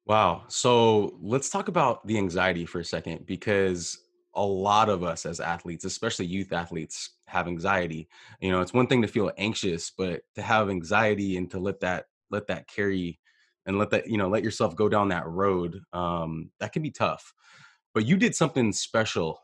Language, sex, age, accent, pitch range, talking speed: English, male, 20-39, American, 90-120 Hz, 190 wpm